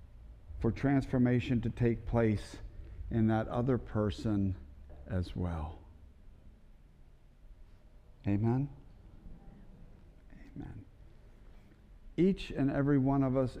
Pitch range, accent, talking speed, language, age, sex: 85-130 Hz, American, 85 wpm, English, 50-69, male